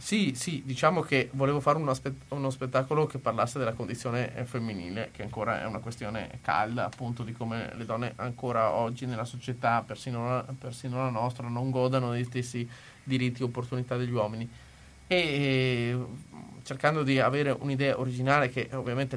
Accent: native